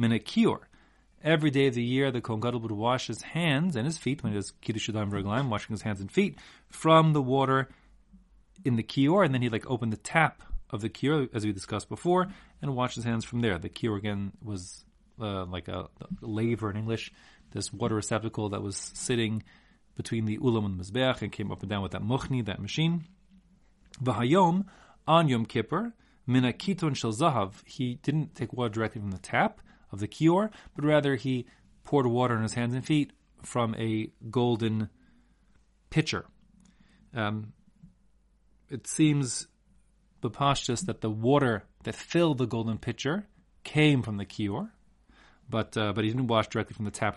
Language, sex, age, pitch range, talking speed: English, male, 30-49, 110-155 Hz, 185 wpm